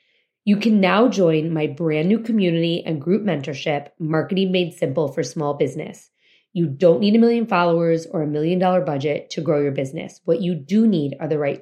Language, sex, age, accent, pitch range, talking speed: English, female, 30-49, American, 155-195 Hz, 200 wpm